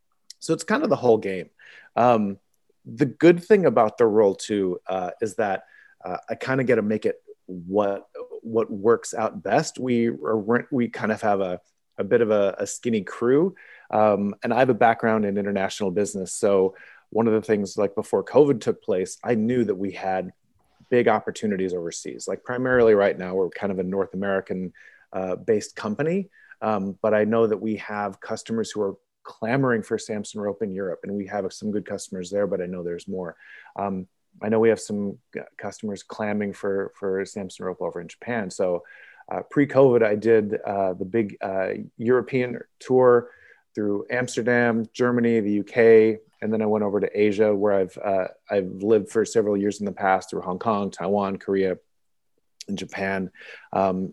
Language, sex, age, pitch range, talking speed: English, male, 30-49, 95-115 Hz, 185 wpm